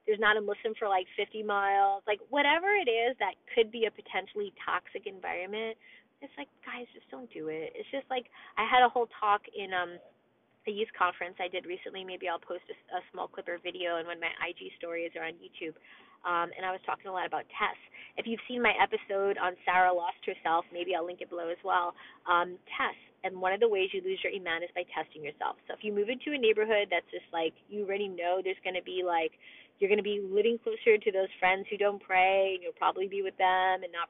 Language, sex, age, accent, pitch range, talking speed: English, female, 20-39, American, 180-250 Hz, 245 wpm